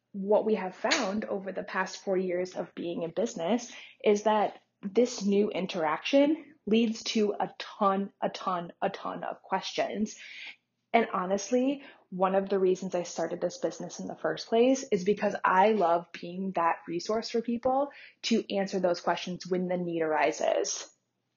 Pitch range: 185-230 Hz